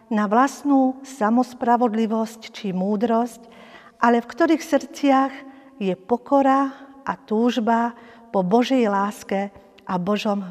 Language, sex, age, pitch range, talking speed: Slovak, female, 50-69, 215-260 Hz, 105 wpm